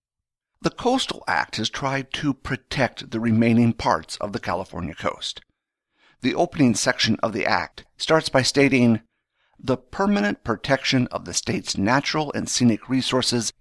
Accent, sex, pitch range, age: American, male, 105-135 Hz, 50-69